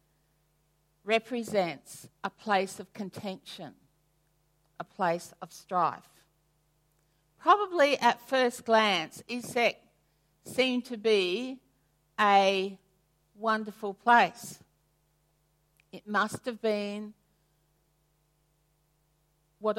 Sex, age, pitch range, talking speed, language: female, 50-69, 155-235 Hz, 75 wpm, English